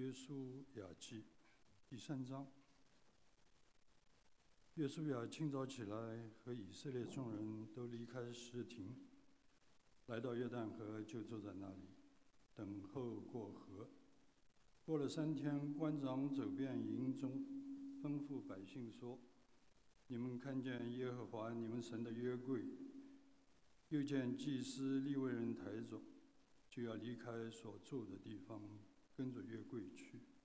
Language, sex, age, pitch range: English, male, 60-79, 115-145 Hz